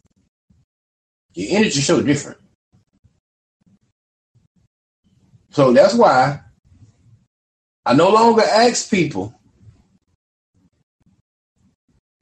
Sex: male